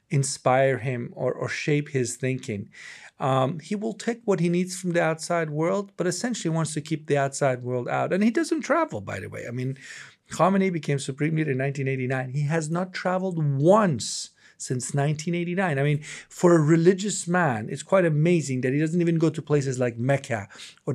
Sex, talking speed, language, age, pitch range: male, 195 wpm, English, 40-59, 125-165 Hz